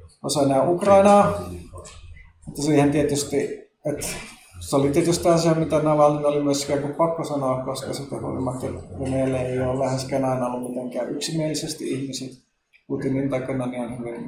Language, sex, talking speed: Finnish, male, 135 wpm